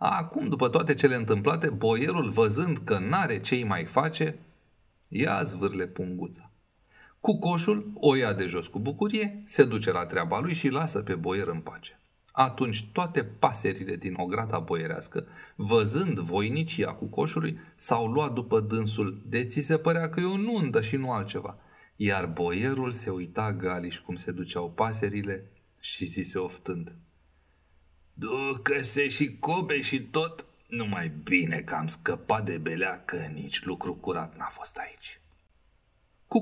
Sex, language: male, Romanian